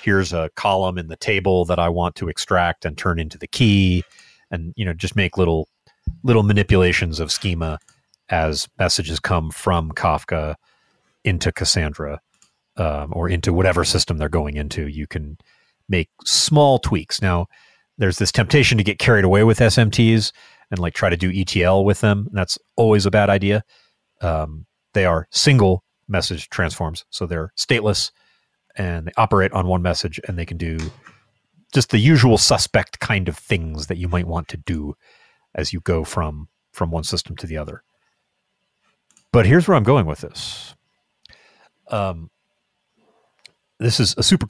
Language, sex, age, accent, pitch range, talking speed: English, male, 30-49, American, 85-110 Hz, 165 wpm